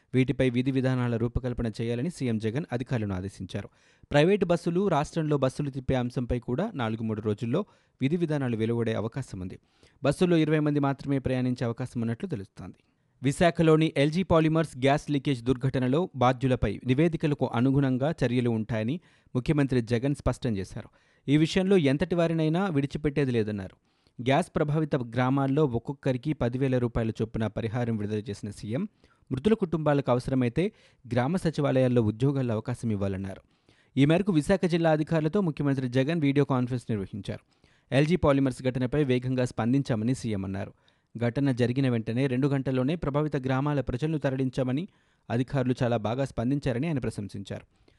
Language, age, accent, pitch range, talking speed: Telugu, 30-49, native, 120-150 Hz, 130 wpm